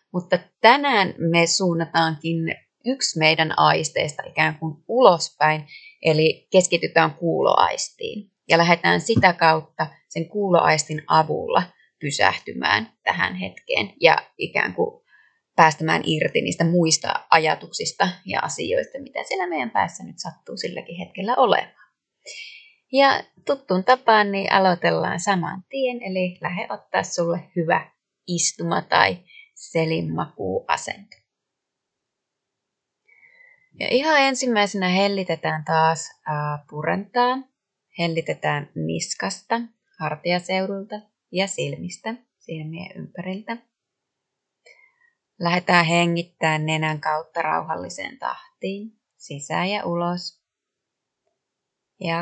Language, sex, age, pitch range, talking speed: Finnish, female, 30-49, 160-210 Hz, 95 wpm